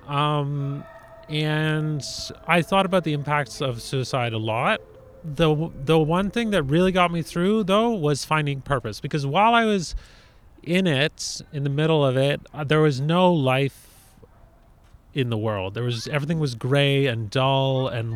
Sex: male